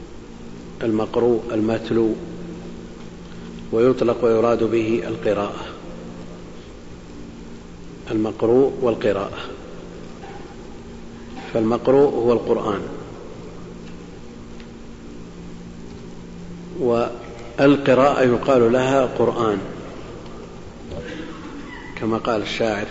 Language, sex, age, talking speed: Arabic, male, 50-69, 45 wpm